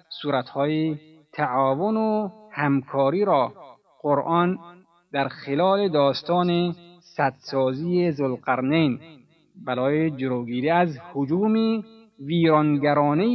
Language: Persian